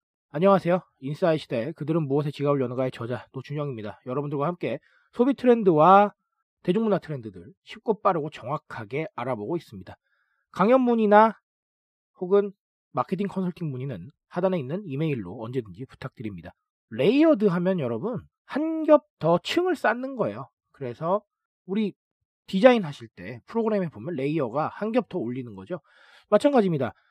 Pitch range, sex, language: 145-220 Hz, male, Korean